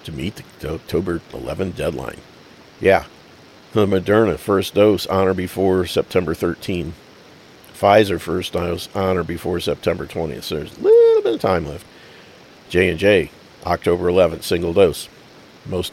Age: 50-69